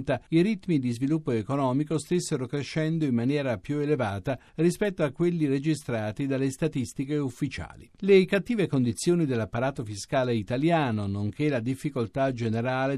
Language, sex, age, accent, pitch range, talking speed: Italian, male, 50-69, native, 115-155 Hz, 130 wpm